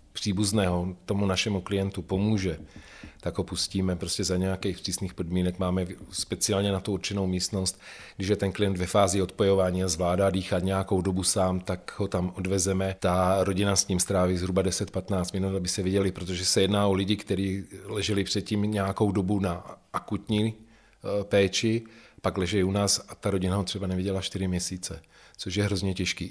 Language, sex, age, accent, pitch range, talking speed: Czech, male, 40-59, native, 95-105 Hz, 175 wpm